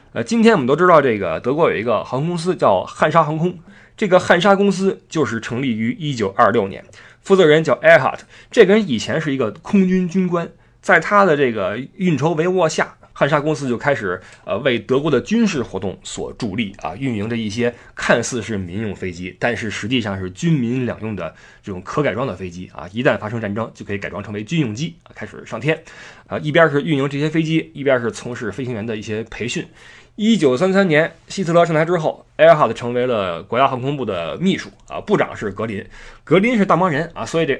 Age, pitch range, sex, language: 20-39, 110-165 Hz, male, Chinese